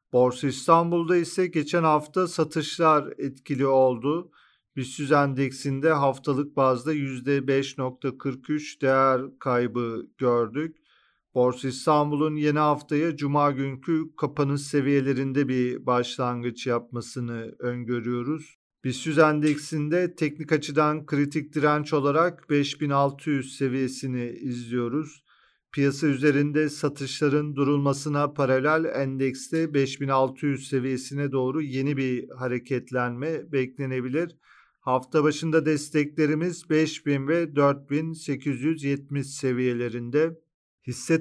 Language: Turkish